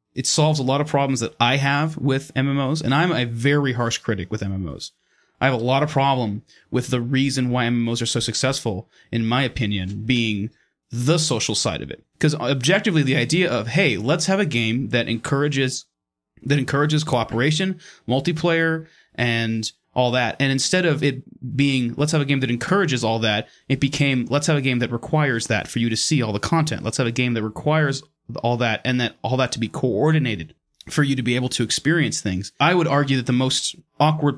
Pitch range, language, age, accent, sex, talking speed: 115-145 Hz, English, 30-49, American, male, 210 wpm